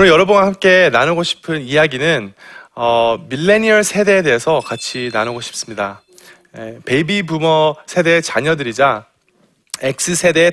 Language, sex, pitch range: Korean, male, 120-180 Hz